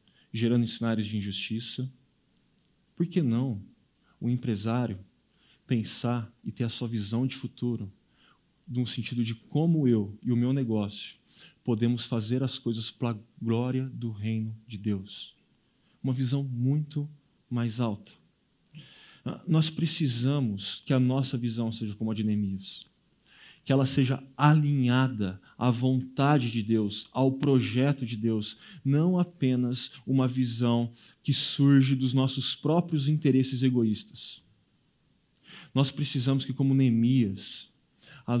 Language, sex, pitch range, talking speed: Portuguese, male, 115-140 Hz, 130 wpm